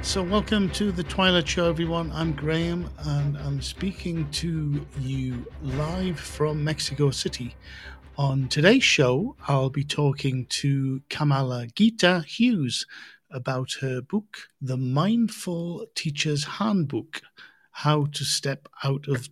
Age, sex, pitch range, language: 50-69, male, 135-165 Hz, English